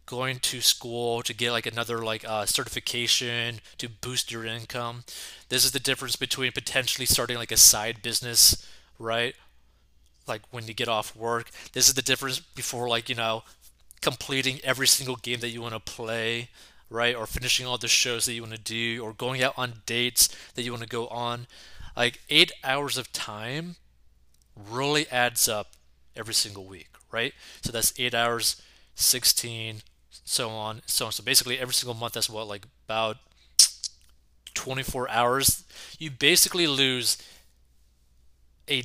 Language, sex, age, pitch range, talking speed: English, male, 20-39, 95-130 Hz, 165 wpm